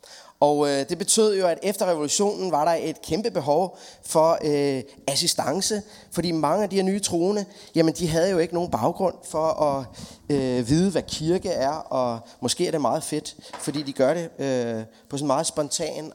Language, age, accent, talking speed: Danish, 30-49, native, 195 wpm